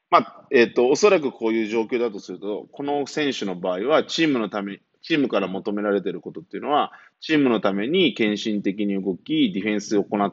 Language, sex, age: Japanese, male, 20-39